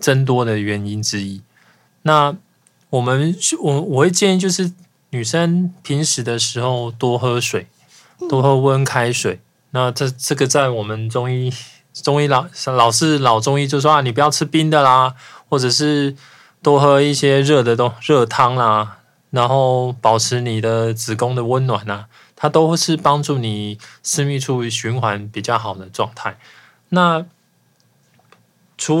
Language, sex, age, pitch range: Chinese, male, 20-39, 115-150 Hz